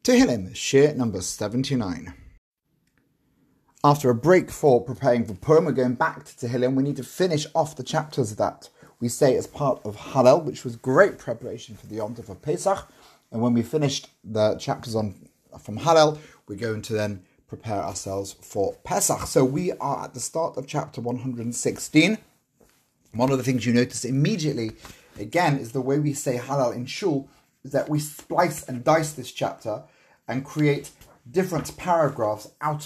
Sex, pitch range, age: male, 120-155 Hz, 30-49